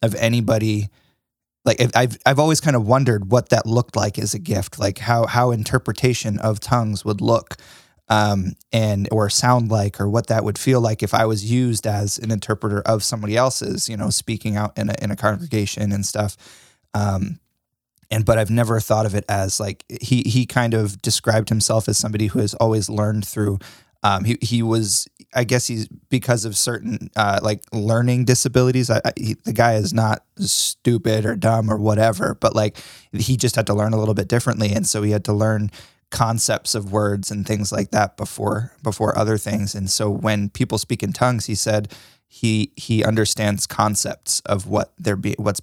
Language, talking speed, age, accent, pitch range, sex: English, 200 wpm, 20-39, American, 105-115 Hz, male